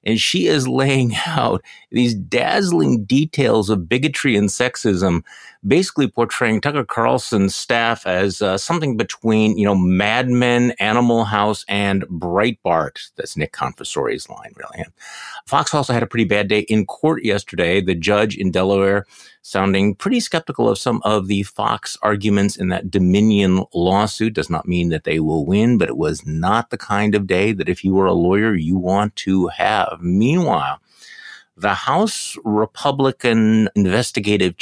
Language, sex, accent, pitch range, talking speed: English, male, American, 95-120 Hz, 160 wpm